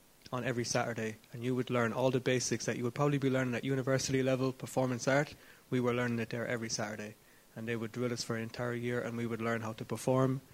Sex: male